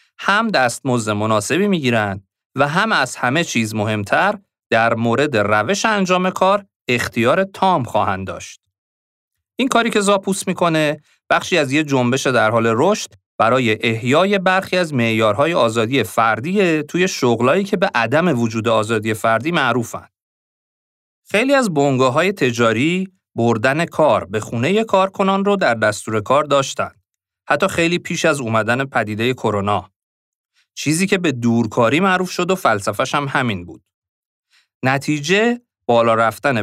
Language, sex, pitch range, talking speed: Persian, male, 115-175 Hz, 135 wpm